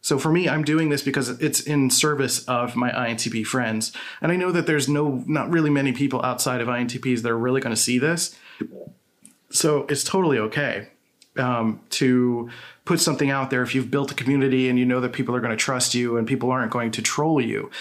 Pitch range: 120-145 Hz